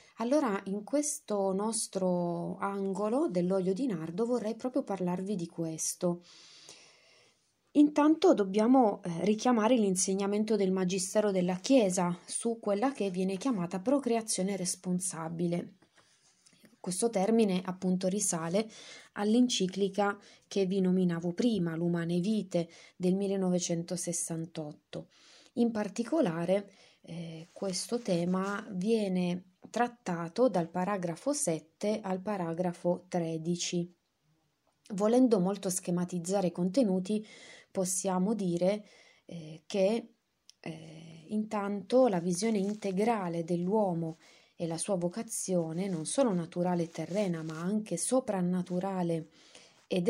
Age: 20-39